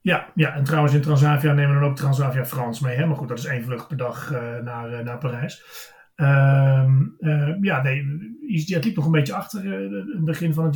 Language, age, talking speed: Dutch, 40-59, 200 wpm